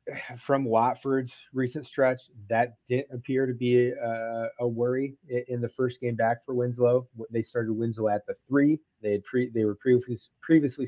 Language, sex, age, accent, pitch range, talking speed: English, male, 30-49, American, 115-140 Hz, 175 wpm